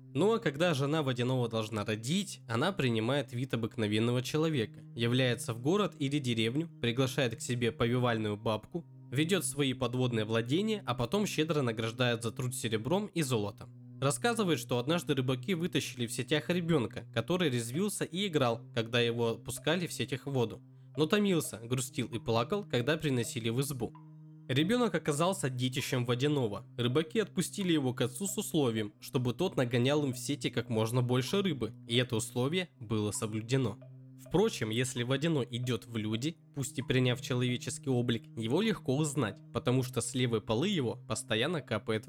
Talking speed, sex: 160 wpm, male